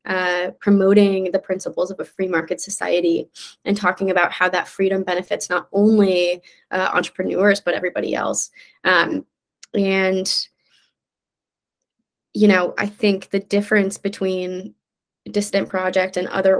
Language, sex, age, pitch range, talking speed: English, female, 20-39, 185-205 Hz, 130 wpm